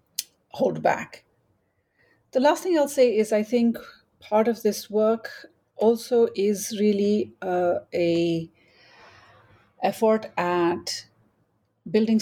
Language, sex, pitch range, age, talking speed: English, female, 175-220 Hz, 40-59, 110 wpm